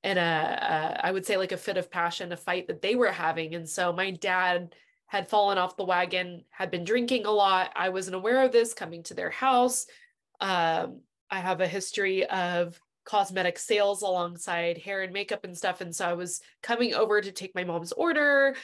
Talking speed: 210 wpm